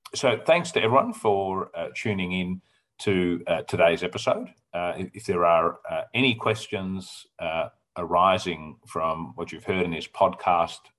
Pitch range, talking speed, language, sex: 85-105 Hz, 155 wpm, English, male